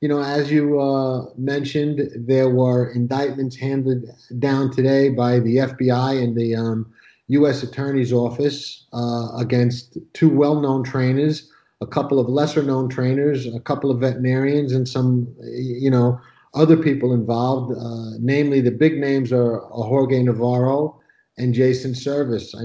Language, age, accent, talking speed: English, 50-69, American, 140 wpm